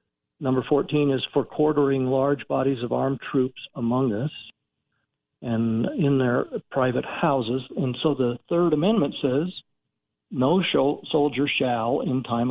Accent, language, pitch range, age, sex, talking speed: American, English, 120-145 Hz, 60-79, male, 135 wpm